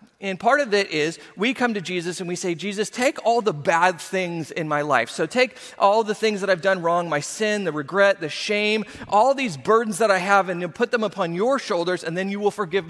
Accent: American